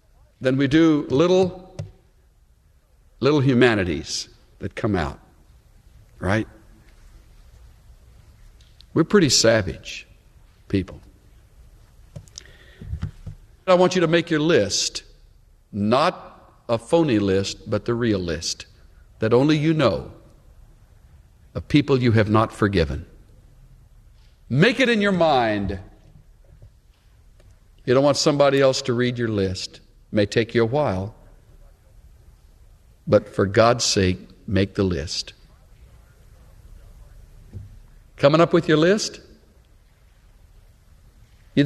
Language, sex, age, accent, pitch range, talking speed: English, male, 60-79, American, 95-160 Hz, 100 wpm